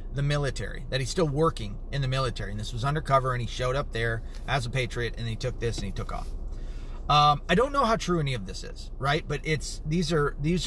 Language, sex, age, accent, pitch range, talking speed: English, male, 30-49, American, 120-165 Hz, 255 wpm